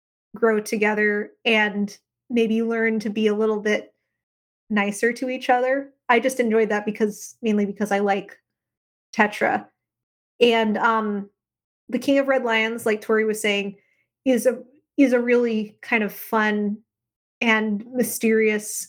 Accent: American